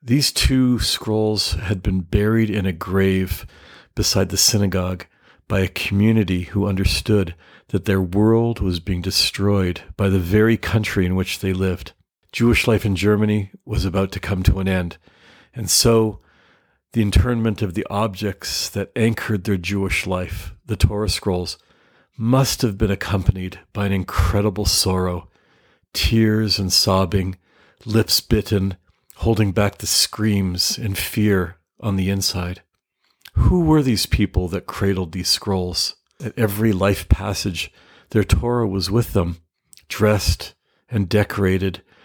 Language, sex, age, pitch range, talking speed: English, male, 50-69, 90-105 Hz, 140 wpm